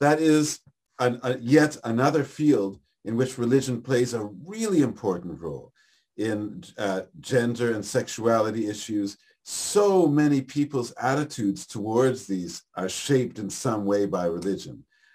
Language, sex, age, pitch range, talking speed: English, male, 50-69, 105-135 Hz, 125 wpm